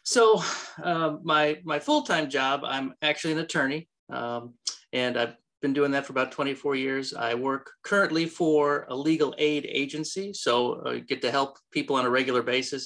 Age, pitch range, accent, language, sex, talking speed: 30-49, 125-155 Hz, American, English, male, 185 wpm